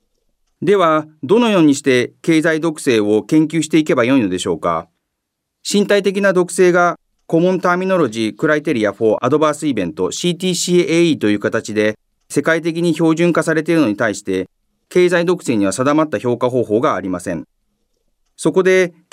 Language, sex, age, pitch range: Japanese, male, 40-59, 120-180 Hz